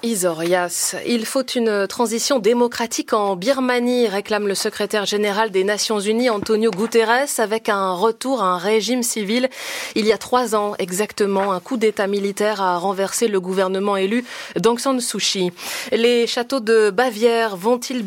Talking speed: 165 wpm